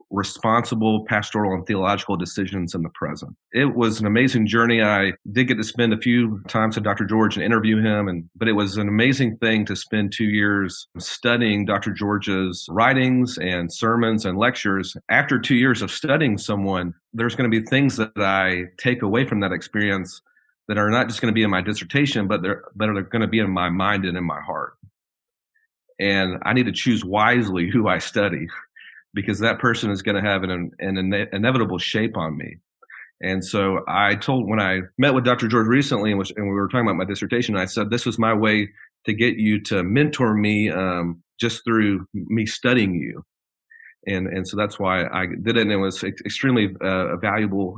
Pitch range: 95-115 Hz